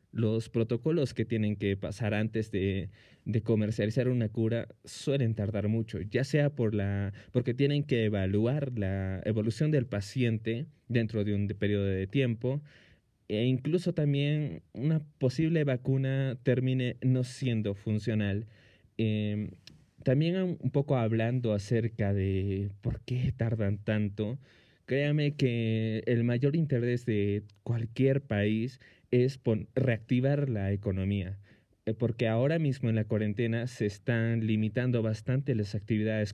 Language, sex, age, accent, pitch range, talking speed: Spanish, male, 20-39, Mexican, 105-125 Hz, 130 wpm